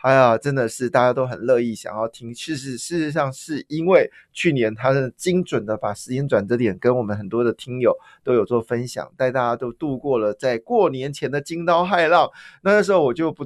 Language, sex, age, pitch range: Chinese, male, 20-39, 120-165 Hz